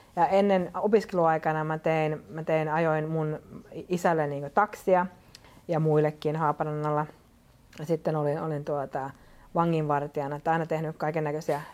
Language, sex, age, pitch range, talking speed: Finnish, female, 30-49, 150-180 Hz, 125 wpm